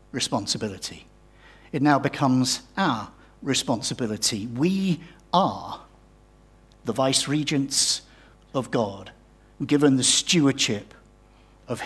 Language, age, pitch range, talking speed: English, 50-69, 115-185 Hz, 80 wpm